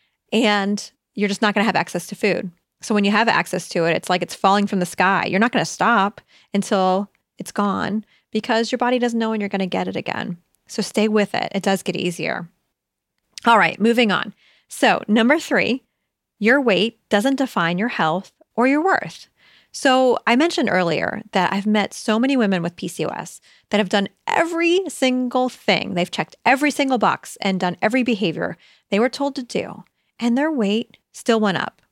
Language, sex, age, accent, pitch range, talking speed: English, female, 30-49, American, 185-240 Hz, 195 wpm